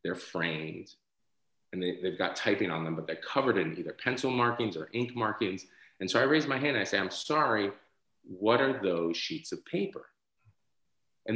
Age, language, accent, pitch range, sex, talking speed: 30-49, English, American, 95-130 Hz, male, 190 wpm